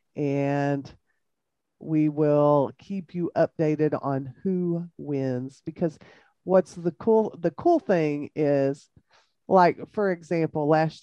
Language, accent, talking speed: English, American, 115 wpm